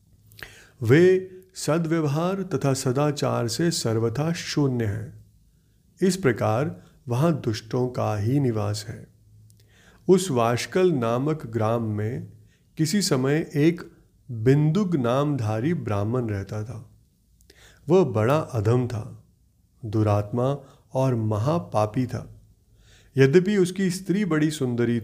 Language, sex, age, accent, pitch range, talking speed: Hindi, male, 30-49, native, 110-150 Hz, 100 wpm